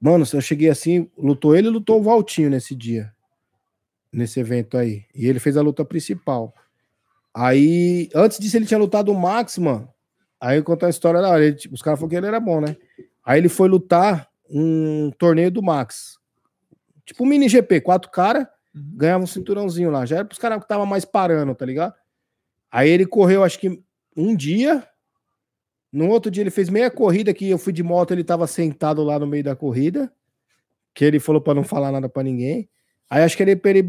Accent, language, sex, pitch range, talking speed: Brazilian, Portuguese, male, 145-200 Hz, 205 wpm